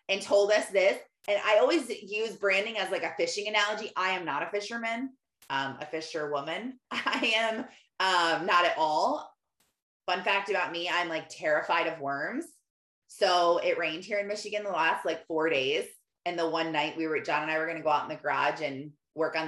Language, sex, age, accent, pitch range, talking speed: English, female, 20-39, American, 160-225 Hz, 205 wpm